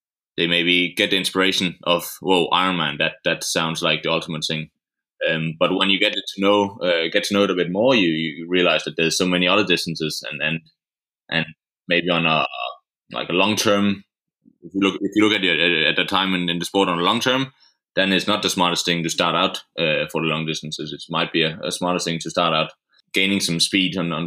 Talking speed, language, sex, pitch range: 245 wpm, English, male, 85-100 Hz